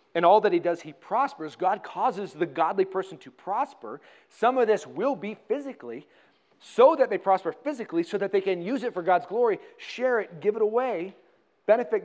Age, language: 40-59, English